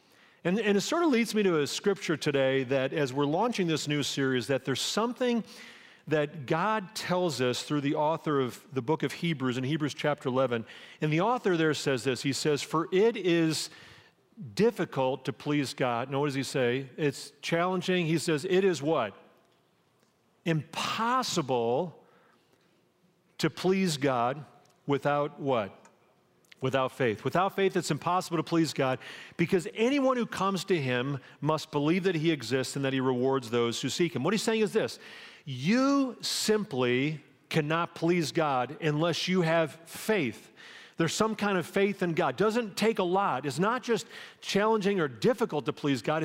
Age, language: 40-59, English